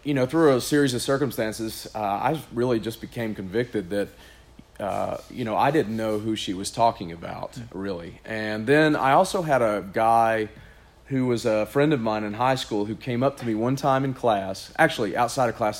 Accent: American